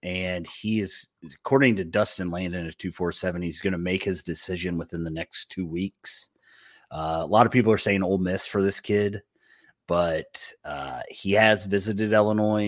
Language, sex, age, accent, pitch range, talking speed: English, male, 30-49, American, 90-115 Hz, 180 wpm